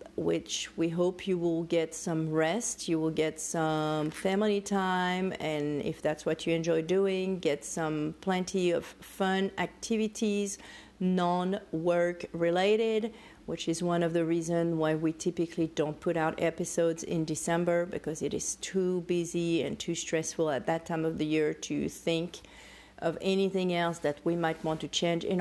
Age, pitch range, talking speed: 40-59, 165-195 Hz, 165 wpm